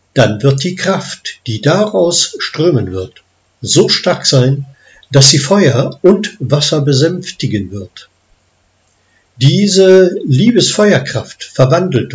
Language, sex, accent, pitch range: German, male, German, 100-165 Hz